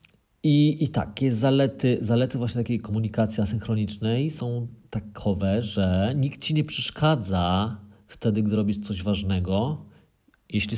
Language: Polish